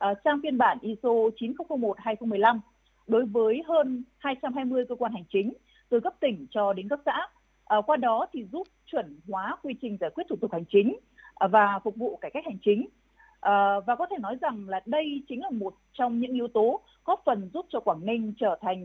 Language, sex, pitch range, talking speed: Vietnamese, female, 200-275 Hz, 215 wpm